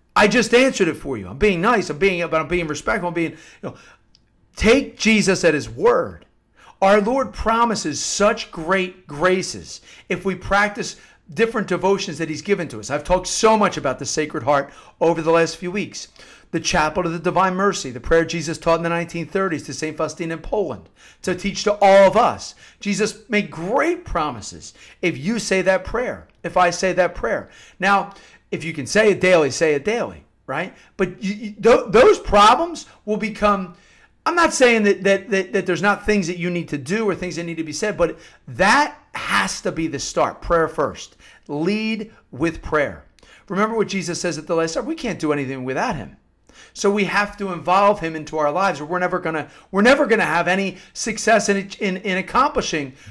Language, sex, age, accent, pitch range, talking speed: English, male, 50-69, American, 165-205 Hz, 200 wpm